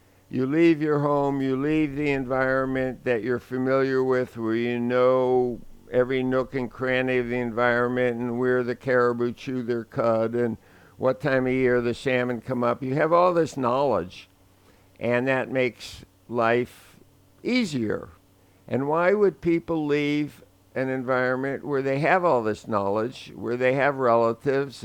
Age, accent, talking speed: 60-79, American, 155 wpm